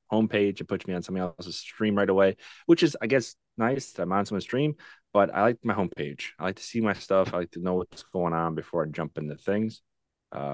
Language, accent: English, American